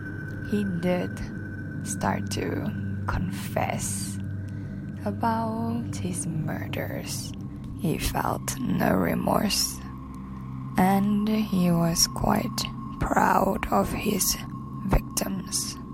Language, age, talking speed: English, 20-39, 75 wpm